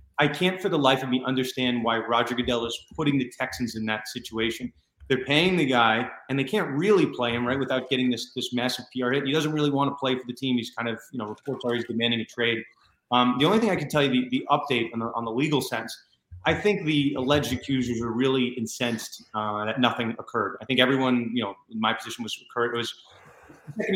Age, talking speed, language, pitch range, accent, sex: 30-49, 245 wpm, English, 125-145 Hz, American, male